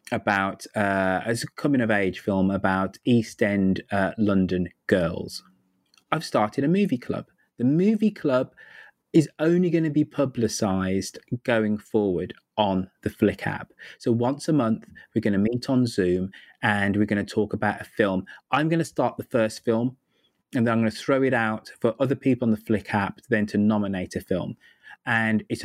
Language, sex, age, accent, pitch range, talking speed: English, male, 20-39, British, 105-145 Hz, 180 wpm